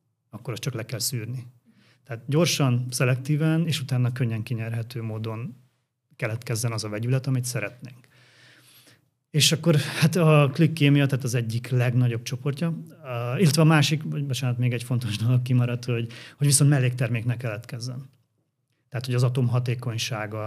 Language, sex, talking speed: Hungarian, male, 145 wpm